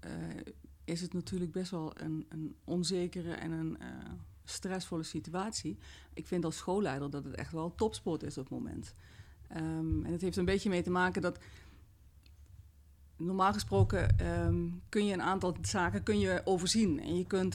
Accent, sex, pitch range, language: Dutch, female, 150-185 Hz, Dutch